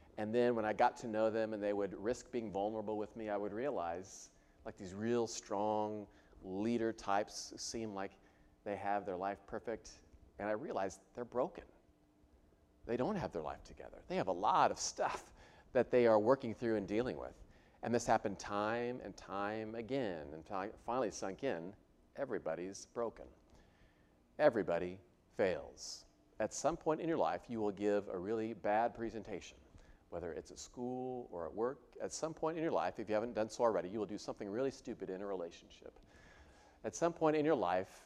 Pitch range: 95-120 Hz